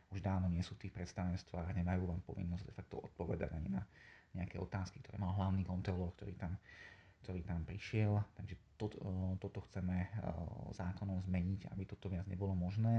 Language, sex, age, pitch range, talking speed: Slovak, male, 30-49, 90-100 Hz, 155 wpm